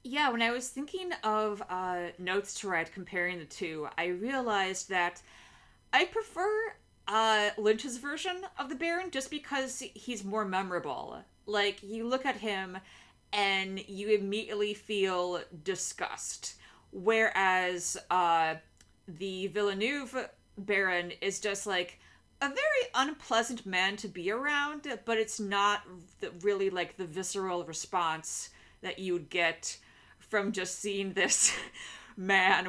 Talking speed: 130 wpm